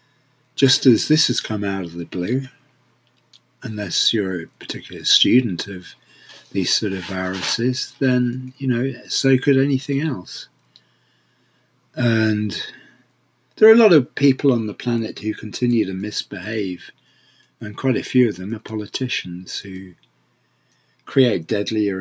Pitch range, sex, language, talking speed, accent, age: 105-130 Hz, male, English, 140 wpm, British, 40-59